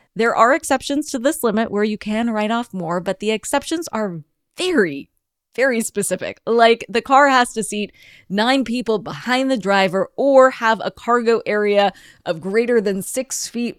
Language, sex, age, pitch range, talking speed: English, female, 20-39, 175-235 Hz, 175 wpm